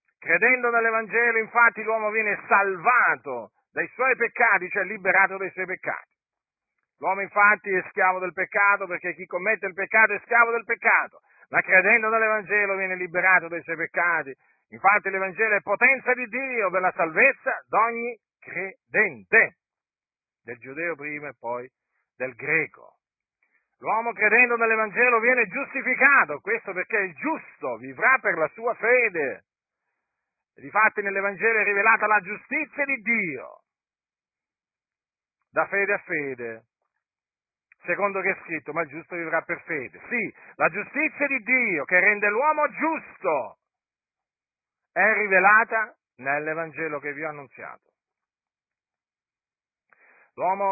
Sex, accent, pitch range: male, native, 180-230 Hz